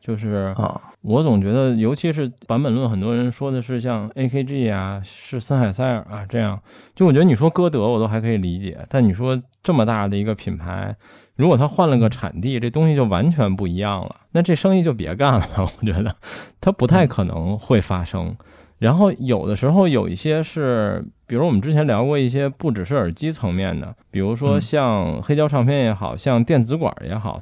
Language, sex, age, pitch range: Chinese, male, 20-39, 100-135 Hz